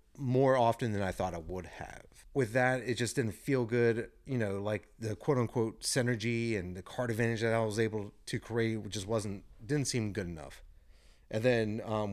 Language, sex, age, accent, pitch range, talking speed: English, male, 30-49, American, 95-120 Hz, 200 wpm